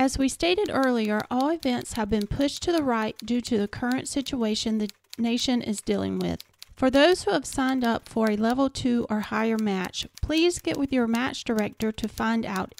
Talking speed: 205 wpm